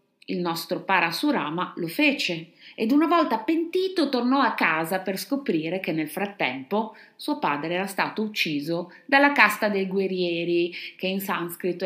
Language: Italian